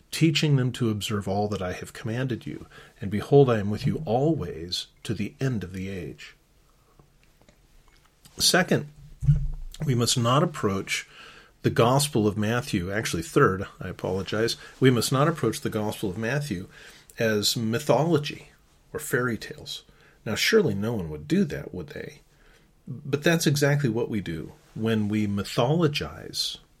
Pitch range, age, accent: 105-150 Hz, 40-59, American